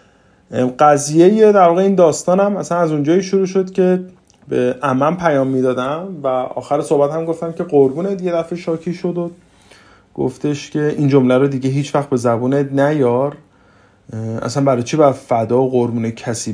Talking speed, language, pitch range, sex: 165 wpm, Persian, 120-165 Hz, male